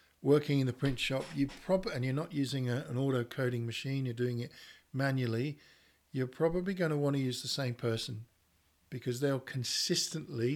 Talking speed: 190 wpm